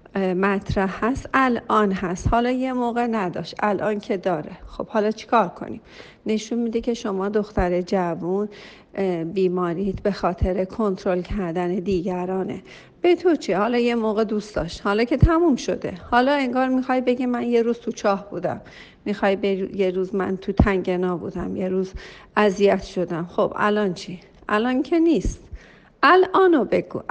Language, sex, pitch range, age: Persian, female, 185-235 Hz, 50-69